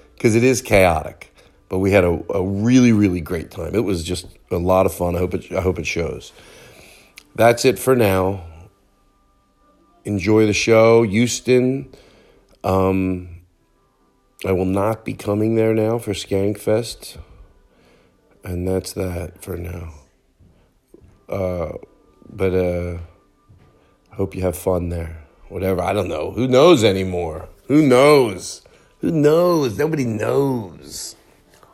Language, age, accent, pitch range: English, 40-59, American, 90-110 Hz